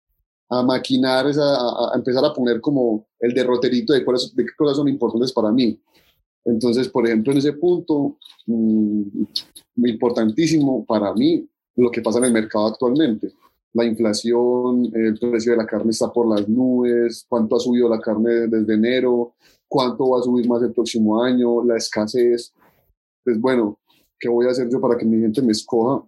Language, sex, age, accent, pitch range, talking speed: Spanish, male, 30-49, Colombian, 110-125 Hz, 180 wpm